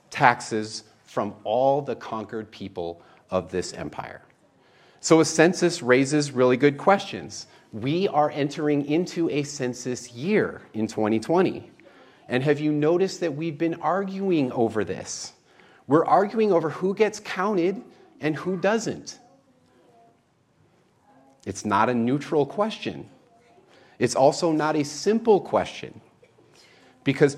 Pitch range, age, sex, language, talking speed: 110-165 Hz, 40-59, male, English, 125 wpm